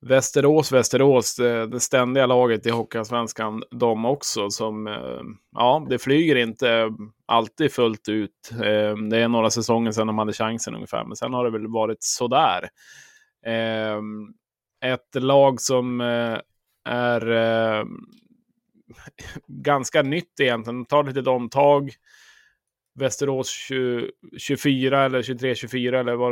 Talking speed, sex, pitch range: 120 wpm, male, 115-130 Hz